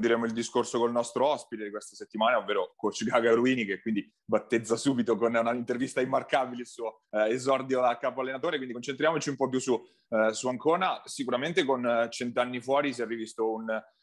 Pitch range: 115-135 Hz